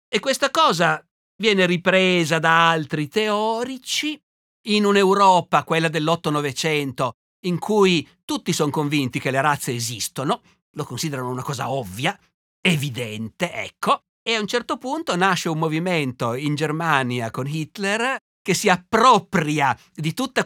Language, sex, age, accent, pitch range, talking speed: Italian, male, 50-69, native, 150-200 Hz, 135 wpm